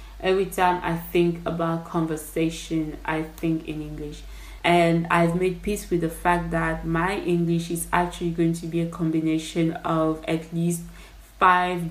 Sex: female